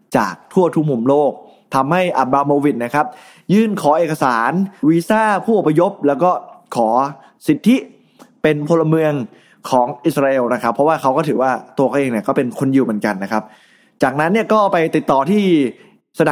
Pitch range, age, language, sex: 135-180 Hz, 20-39, Thai, male